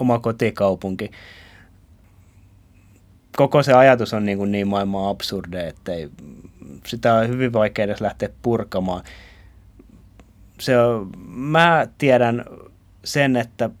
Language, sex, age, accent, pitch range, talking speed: Finnish, male, 30-49, native, 95-110 Hz, 105 wpm